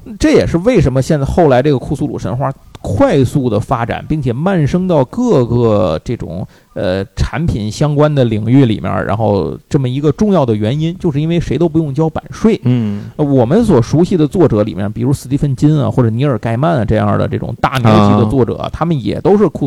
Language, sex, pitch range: Chinese, male, 115-175 Hz